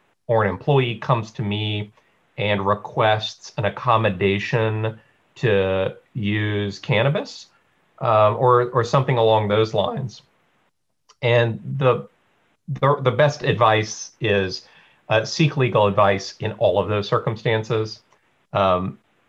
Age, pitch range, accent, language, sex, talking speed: 40-59, 100-125 Hz, American, English, male, 115 wpm